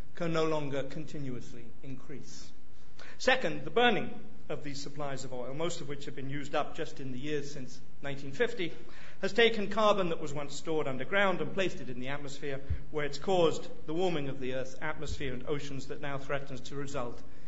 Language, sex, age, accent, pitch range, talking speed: English, male, 50-69, British, 140-180 Hz, 190 wpm